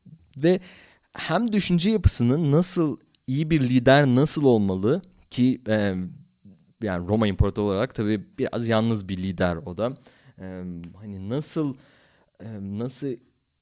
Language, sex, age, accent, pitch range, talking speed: Turkish, male, 30-49, native, 105-135 Hz, 110 wpm